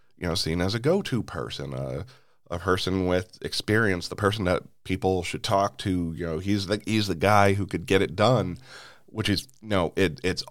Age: 30-49